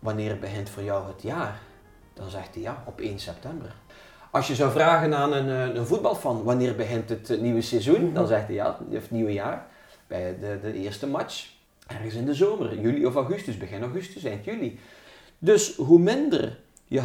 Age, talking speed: 40-59, 190 wpm